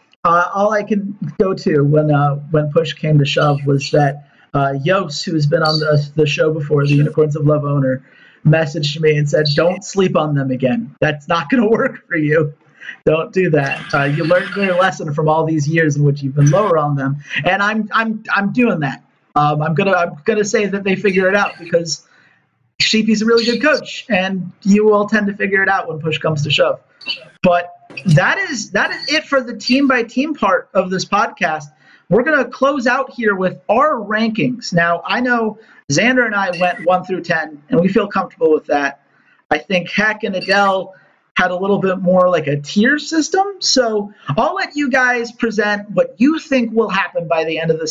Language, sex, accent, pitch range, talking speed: English, male, American, 155-215 Hz, 215 wpm